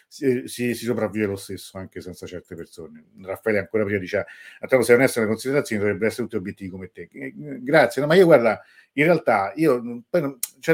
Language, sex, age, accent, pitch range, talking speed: Italian, male, 50-69, native, 100-120 Hz, 195 wpm